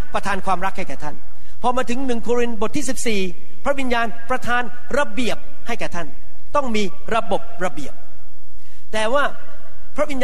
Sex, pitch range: male, 175-240 Hz